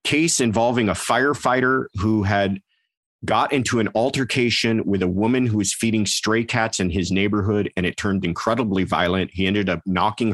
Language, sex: English, male